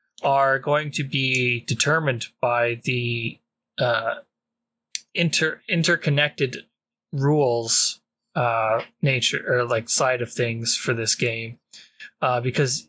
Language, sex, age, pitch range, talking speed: English, male, 20-39, 120-145 Hz, 105 wpm